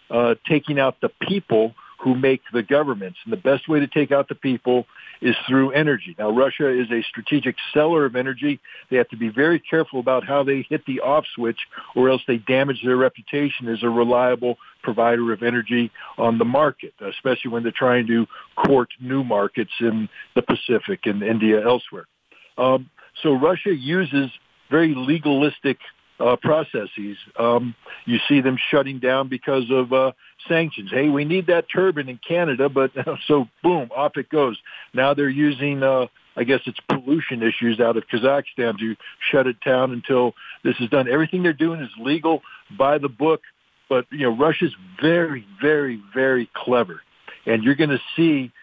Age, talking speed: 60-79, 175 wpm